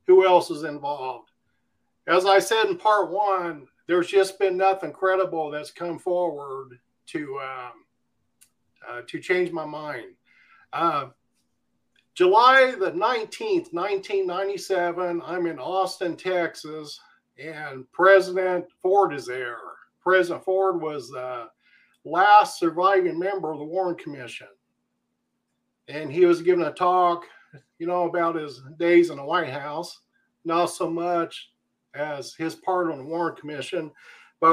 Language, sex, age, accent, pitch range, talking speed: English, male, 50-69, American, 160-200 Hz, 130 wpm